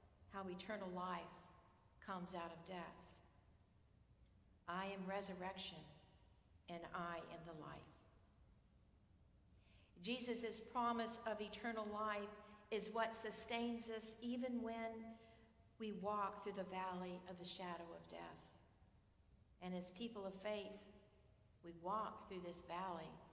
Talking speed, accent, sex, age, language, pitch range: 120 wpm, American, female, 50-69, English, 175-230 Hz